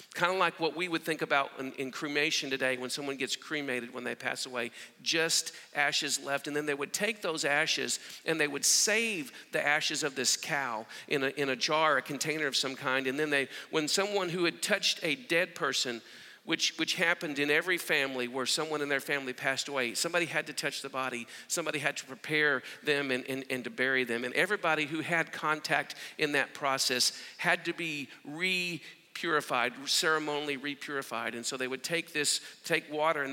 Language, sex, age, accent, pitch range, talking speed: English, male, 50-69, American, 135-165 Hz, 205 wpm